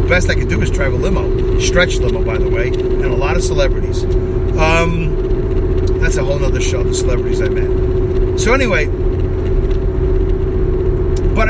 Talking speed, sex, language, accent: 160 wpm, male, English, American